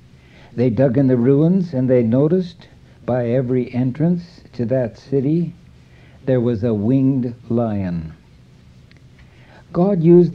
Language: English